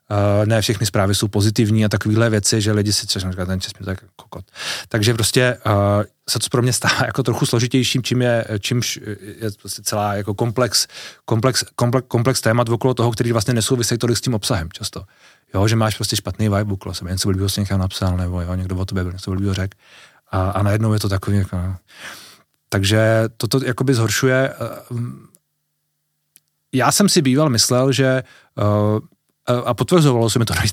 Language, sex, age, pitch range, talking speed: Czech, male, 30-49, 105-125 Hz, 180 wpm